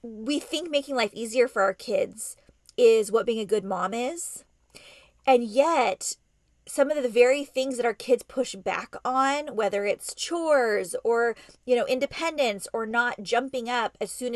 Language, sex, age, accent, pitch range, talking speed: English, female, 20-39, American, 230-300 Hz, 170 wpm